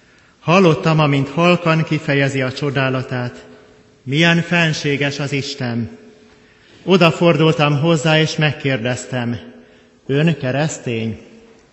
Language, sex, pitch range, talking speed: Hungarian, male, 130-160 Hz, 80 wpm